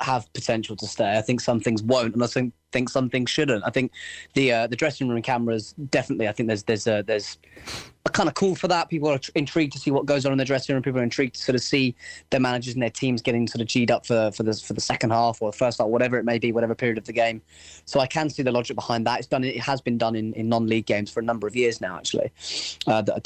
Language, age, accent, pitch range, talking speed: English, 20-39, British, 110-135 Hz, 295 wpm